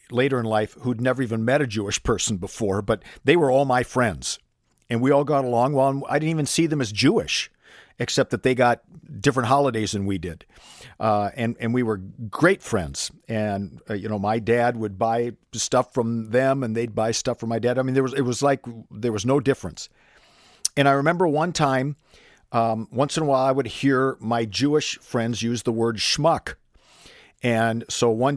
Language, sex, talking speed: English, male, 205 wpm